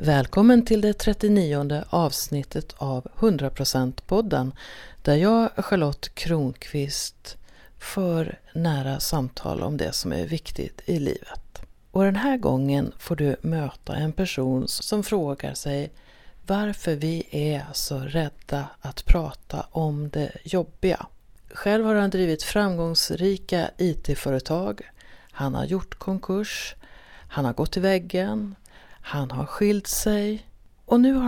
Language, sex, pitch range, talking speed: Swedish, female, 145-195 Hz, 125 wpm